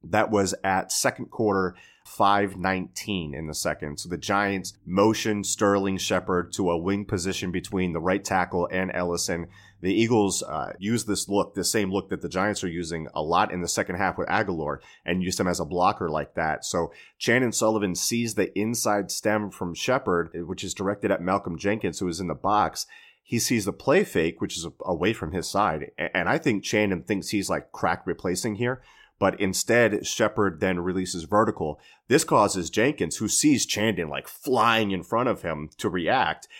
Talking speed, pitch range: 190 wpm, 90-105 Hz